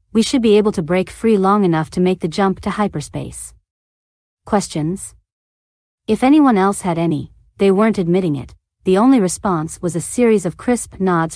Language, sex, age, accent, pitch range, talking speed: English, female, 40-59, American, 160-205 Hz, 180 wpm